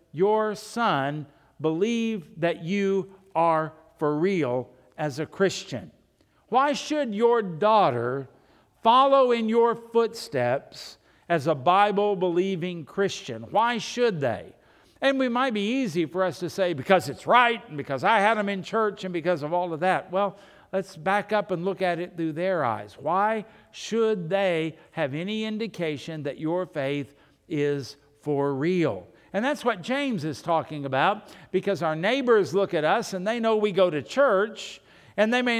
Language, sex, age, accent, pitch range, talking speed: English, male, 60-79, American, 160-210 Hz, 165 wpm